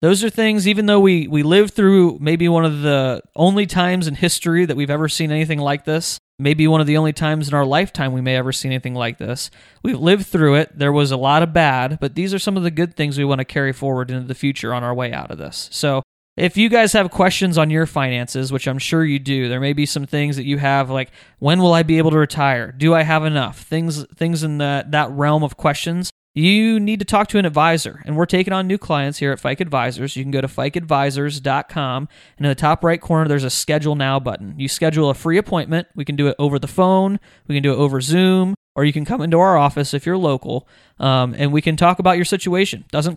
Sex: male